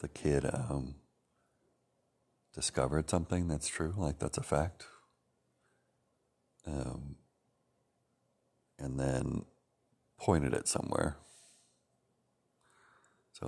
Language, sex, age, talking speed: English, male, 60-79, 80 wpm